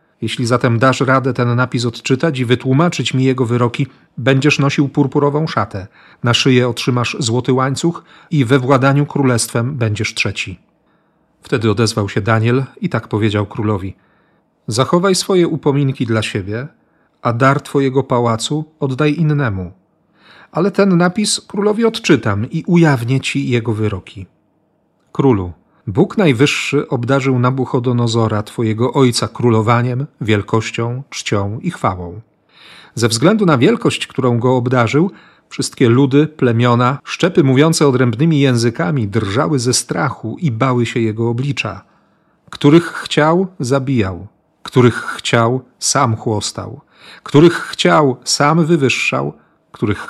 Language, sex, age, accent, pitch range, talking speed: Polish, male, 40-59, native, 115-145 Hz, 120 wpm